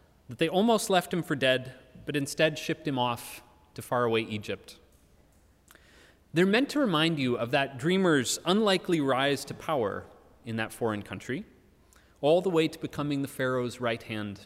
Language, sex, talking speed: English, male, 165 wpm